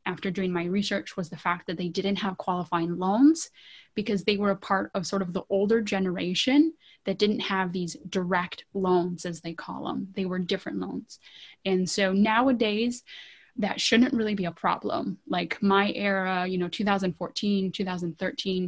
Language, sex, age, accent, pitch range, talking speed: English, female, 20-39, American, 180-210 Hz, 170 wpm